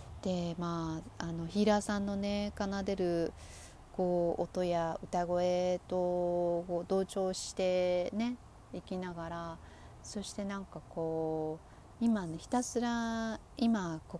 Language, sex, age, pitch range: Japanese, female, 40-59, 160-190 Hz